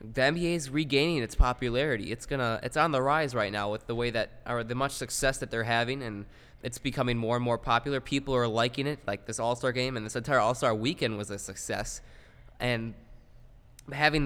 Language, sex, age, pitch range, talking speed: English, male, 20-39, 120-135 Hz, 220 wpm